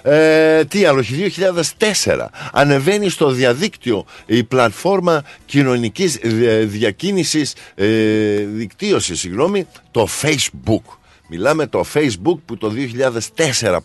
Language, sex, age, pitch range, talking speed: Greek, male, 50-69, 115-165 Hz, 95 wpm